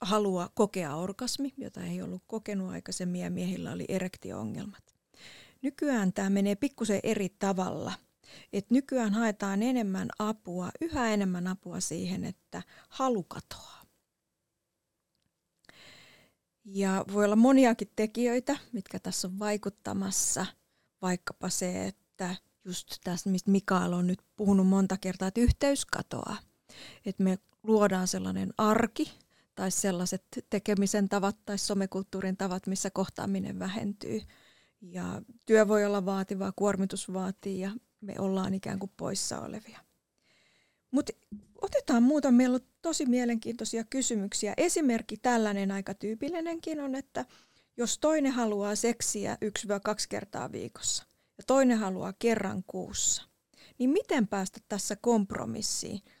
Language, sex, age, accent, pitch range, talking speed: Finnish, female, 30-49, native, 190-235 Hz, 120 wpm